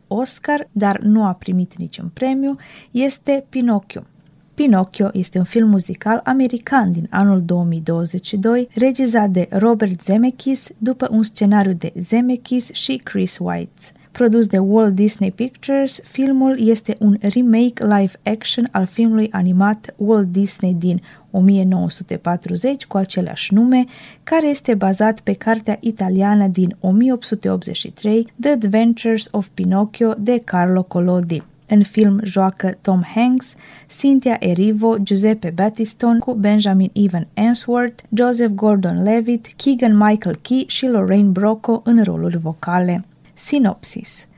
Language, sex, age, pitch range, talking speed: Romanian, female, 20-39, 190-235 Hz, 120 wpm